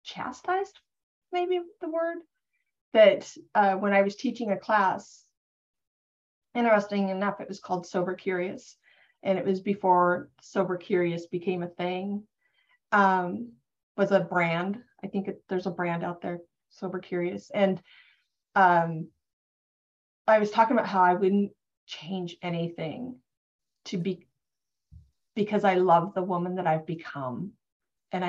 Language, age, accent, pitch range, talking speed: English, 30-49, American, 180-215 Hz, 135 wpm